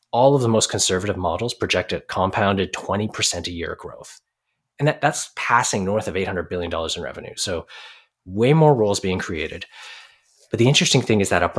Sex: male